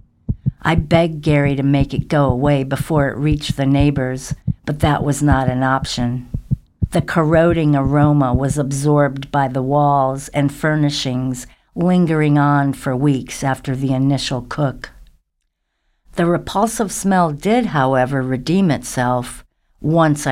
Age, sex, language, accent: 60-79, female, English, American